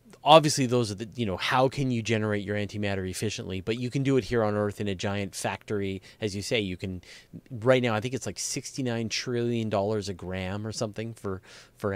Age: 30-49